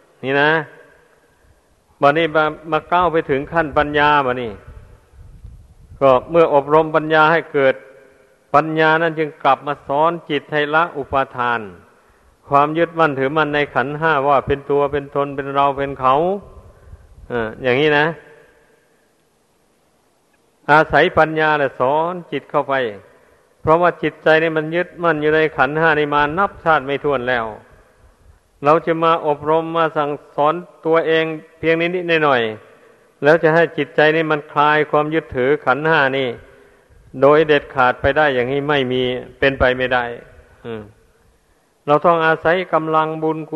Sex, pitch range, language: male, 140-160 Hz, Thai